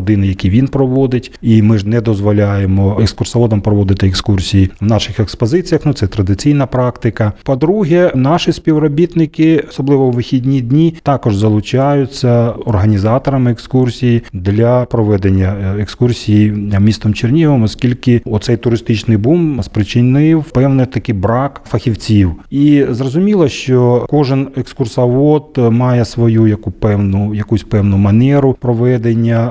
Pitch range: 105-130 Hz